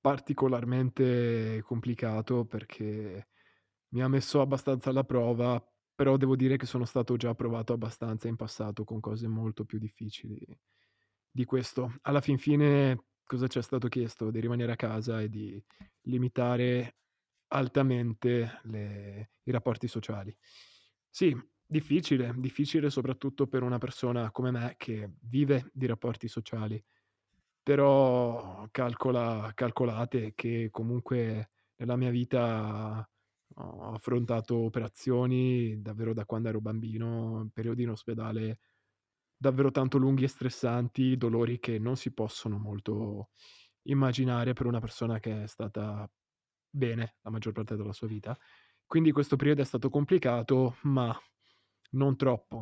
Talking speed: 130 wpm